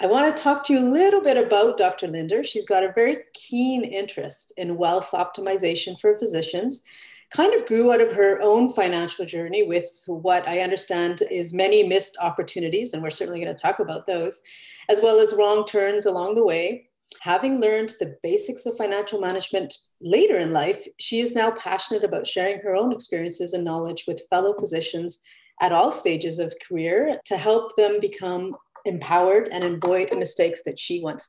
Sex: female